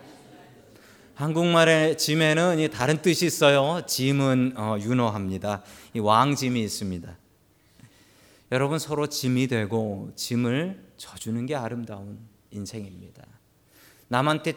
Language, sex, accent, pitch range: Korean, male, native, 115-160 Hz